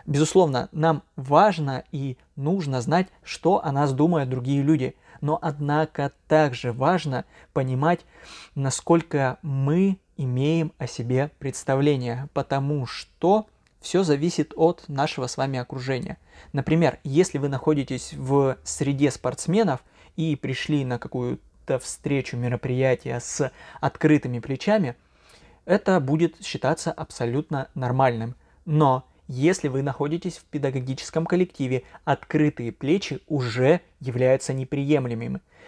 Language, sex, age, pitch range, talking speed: Russian, male, 20-39, 130-165 Hz, 110 wpm